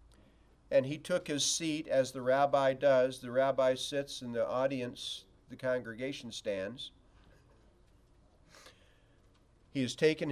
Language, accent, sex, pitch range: English, American, male, 125-160 Hz